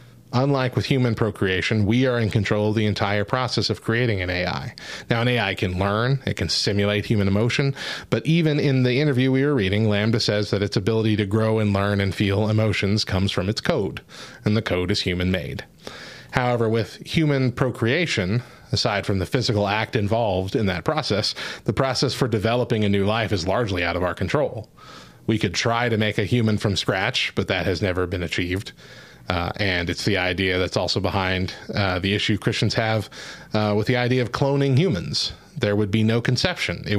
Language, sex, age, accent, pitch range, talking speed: English, male, 30-49, American, 95-120 Hz, 200 wpm